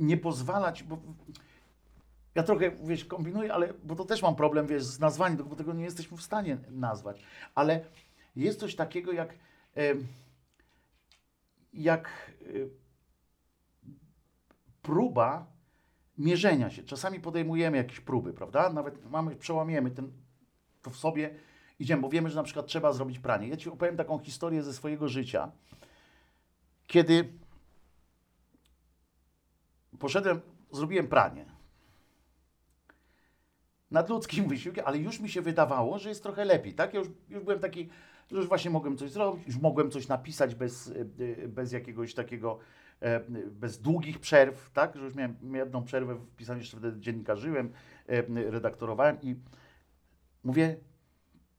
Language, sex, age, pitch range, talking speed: Polish, male, 50-69, 120-165 Hz, 135 wpm